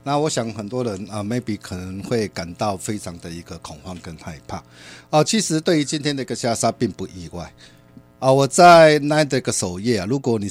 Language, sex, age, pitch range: Chinese, male, 50-69, 95-140 Hz